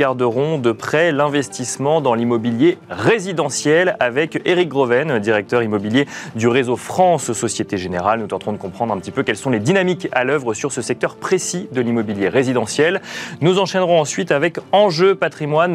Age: 30-49